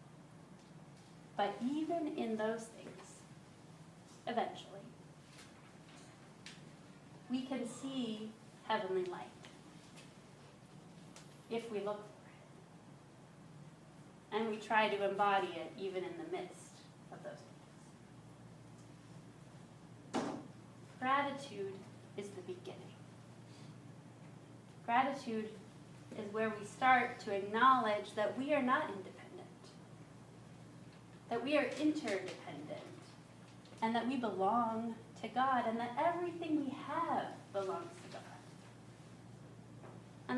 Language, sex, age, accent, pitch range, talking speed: English, female, 30-49, American, 170-260 Hz, 95 wpm